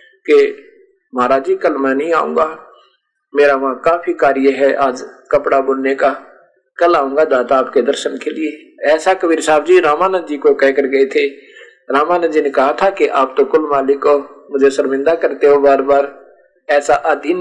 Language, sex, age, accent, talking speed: Hindi, male, 50-69, native, 120 wpm